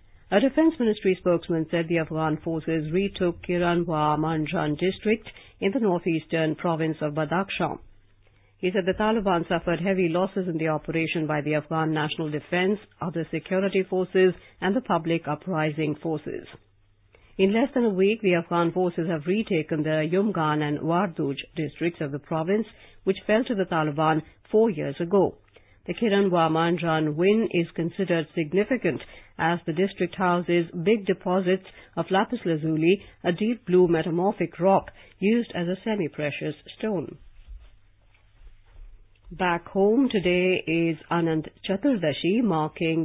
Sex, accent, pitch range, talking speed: female, Indian, 160-190 Hz, 140 wpm